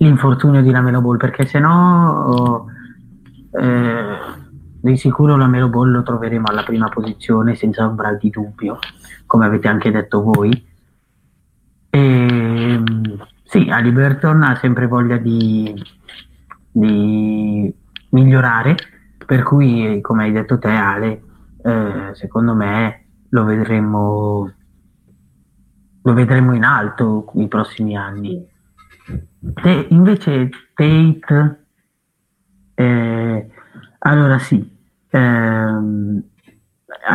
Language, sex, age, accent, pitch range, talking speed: Italian, male, 30-49, native, 110-130 Hz, 100 wpm